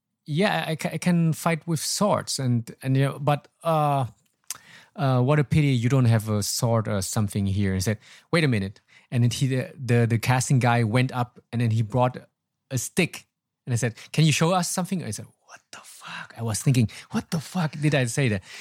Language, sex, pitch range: English, male, 110-150 Hz